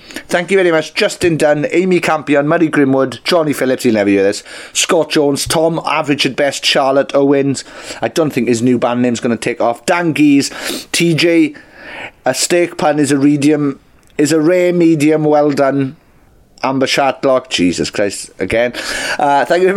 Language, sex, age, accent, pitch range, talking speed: English, male, 30-49, British, 135-170 Hz, 180 wpm